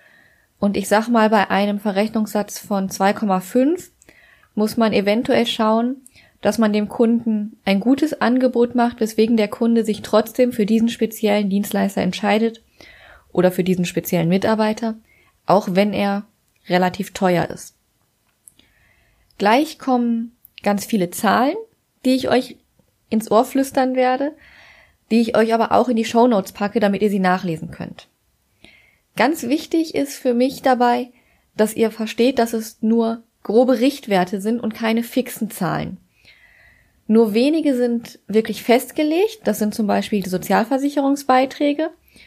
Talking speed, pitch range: 140 wpm, 200-245 Hz